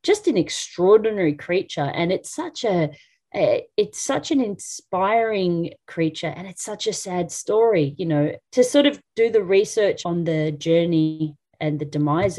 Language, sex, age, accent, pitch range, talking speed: English, female, 30-49, Australian, 145-190 Hz, 160 wpm